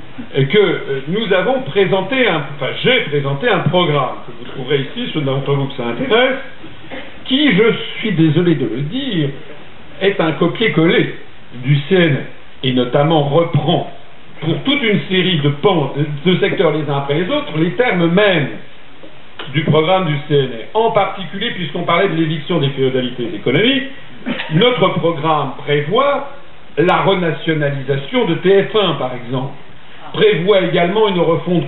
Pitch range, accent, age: 150-215 Hz, French, 60-79